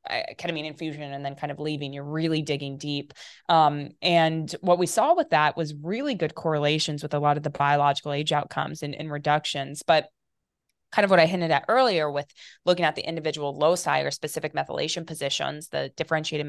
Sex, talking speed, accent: female, 195 wpm, American